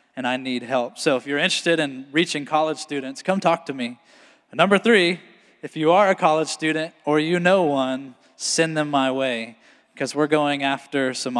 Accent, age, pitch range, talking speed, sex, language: American, 20-39, 135-160 Hz, 195 wpm, male, English